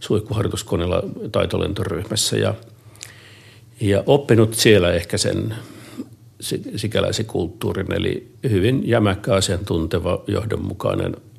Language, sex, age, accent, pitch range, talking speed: Finnish, male, 60-79, native, 100-115 Hz, 80 wpm